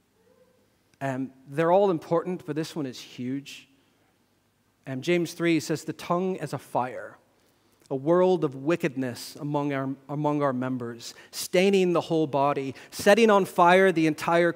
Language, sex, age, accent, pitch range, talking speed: English, male, 40-59, American, 145-175 Hz, 145 wpm